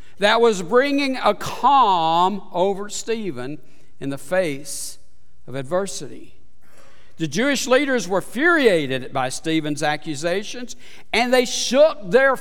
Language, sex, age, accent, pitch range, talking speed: English, male, 60-79, American, 155-245 Hz, 115 wpm